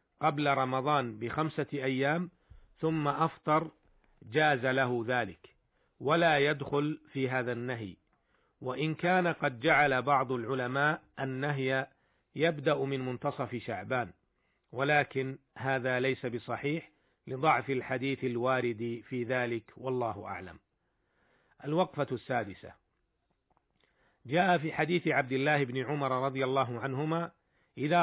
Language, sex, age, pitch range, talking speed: Arabic, male, 50-69, 125-150 Hz, 105 wpm